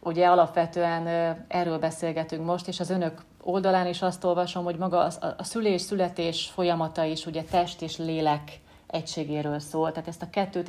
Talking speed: 155 wpm